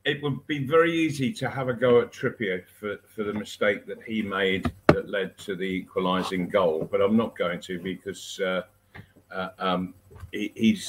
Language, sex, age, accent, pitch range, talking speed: English, male, 50-69, British, 95-130 Hz, 195 wpm